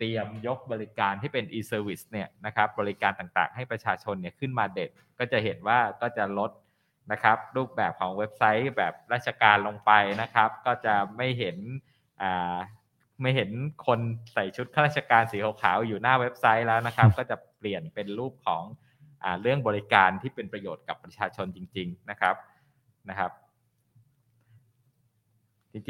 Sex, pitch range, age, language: male, 105-130 Hz, 20-39, Thai